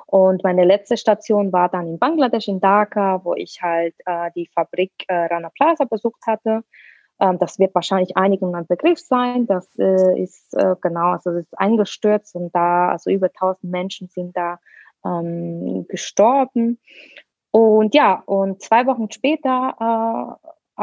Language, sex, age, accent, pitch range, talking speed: German, female, 20-39, German, 180-215 Hz, 160 wpm